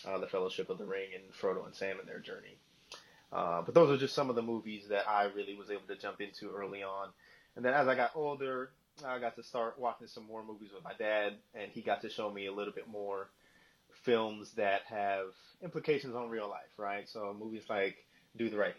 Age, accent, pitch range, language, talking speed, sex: 20-39, American, 100-130 Hz, English, 235 wpm, male